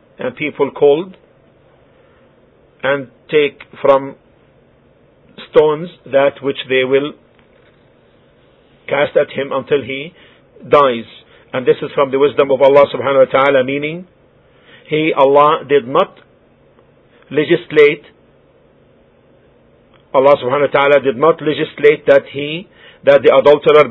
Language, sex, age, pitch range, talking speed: English, male, 50-69, 140-180 Hz, 115 wpm